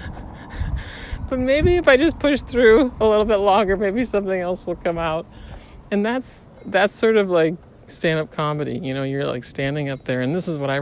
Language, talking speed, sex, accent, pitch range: English, 205 wpm, male, American, 110-170 Hz